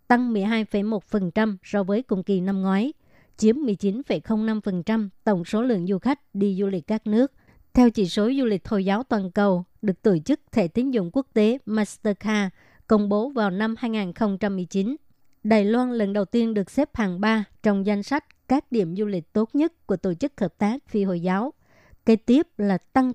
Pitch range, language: 200-230 Hz, Vietnamese